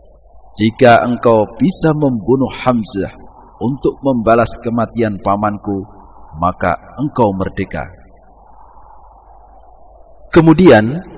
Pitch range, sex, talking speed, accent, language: 105-140 Hz, male, 70 wpm, native, Indonesian